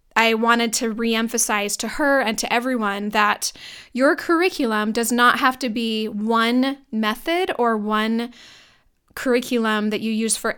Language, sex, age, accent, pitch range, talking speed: English, female, 10-29, American, 220-250 Hz, 150 wpm